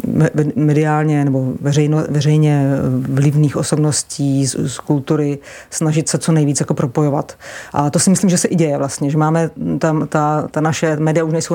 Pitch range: 145-160 Hz